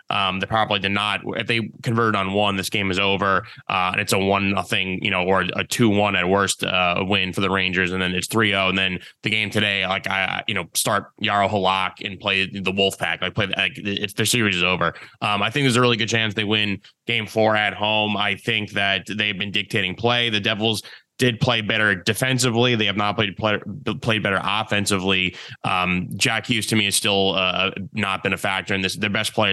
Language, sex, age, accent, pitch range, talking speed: English, male, 20-39, American, 95-110 Hz, 230 wpm